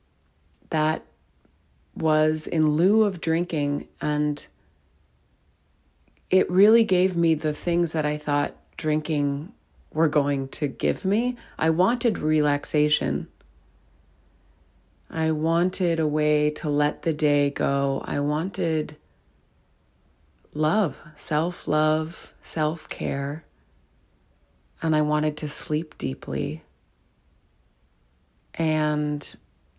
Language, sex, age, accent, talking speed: English, female, 30-49, American, 95 wpm